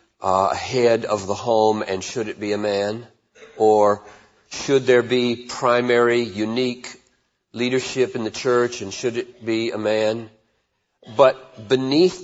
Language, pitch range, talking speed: English, 115-140 Hz, 140 wpm